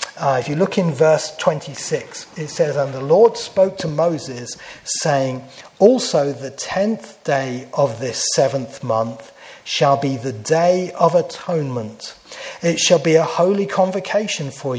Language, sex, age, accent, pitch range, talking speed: English, male, 40-59, British, 135-170 Hz, 150 wpm